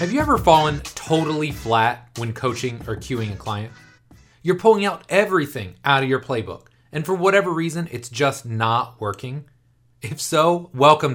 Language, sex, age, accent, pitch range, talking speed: English, male, 30-49, American, 120-170 Hz, 165 wpm